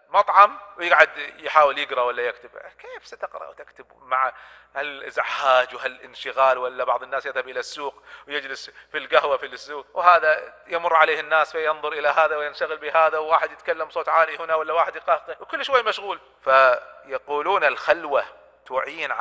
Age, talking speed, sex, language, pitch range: 40-59, 145 wpm, male, Arabic, 140-190 Hz